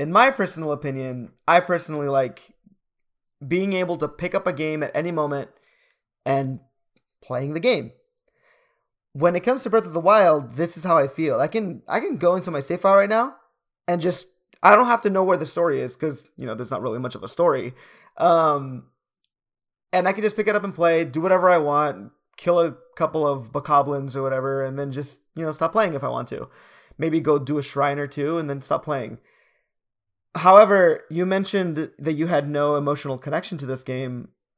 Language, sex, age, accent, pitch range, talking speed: English, male, 20-39, American, 140-185 Hz, 210 wpm